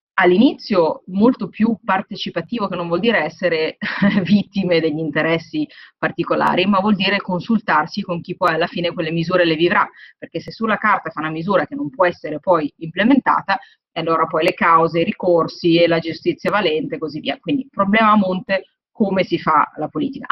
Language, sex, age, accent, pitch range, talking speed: Italian, female, 30-49, native, 165-235 Hz, 180 wpm